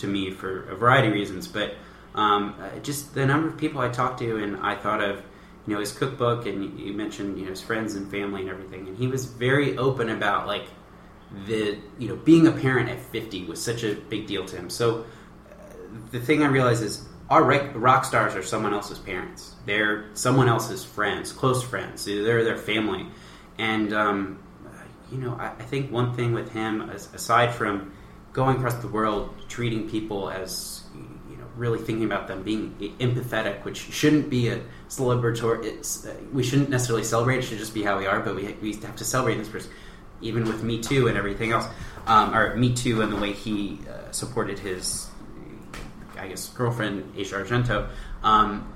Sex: male